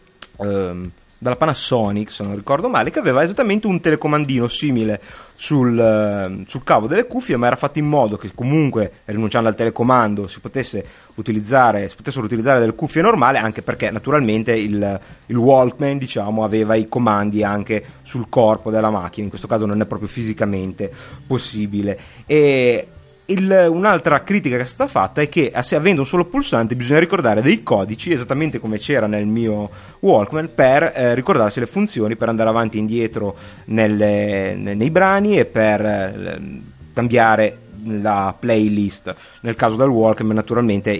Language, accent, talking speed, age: Italian, native, 160 wpm, 30-49